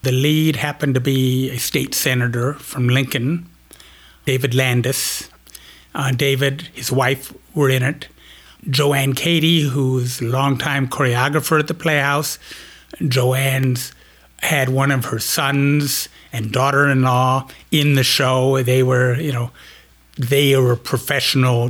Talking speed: 125 wpm